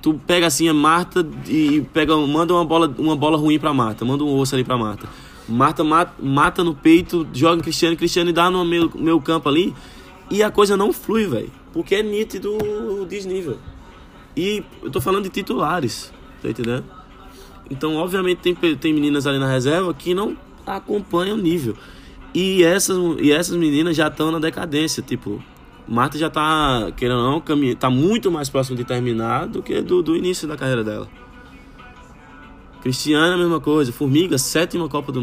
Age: 20-39